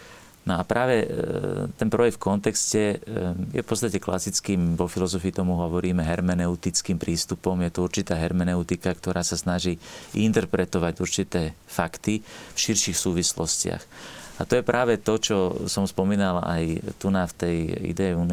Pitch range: 90-100 Hz